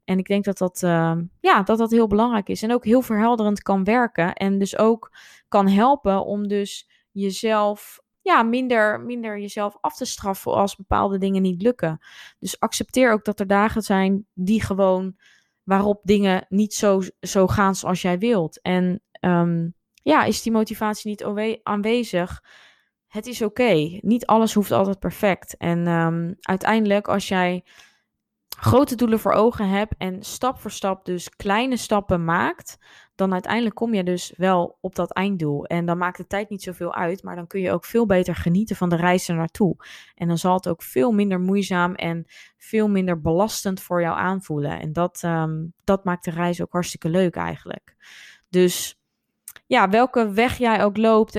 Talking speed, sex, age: 175 wpm, female, 20-39